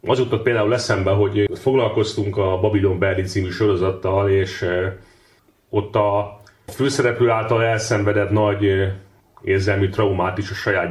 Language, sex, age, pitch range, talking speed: Hungarian, male, 30-49, 100-120 Hz, 120 wpm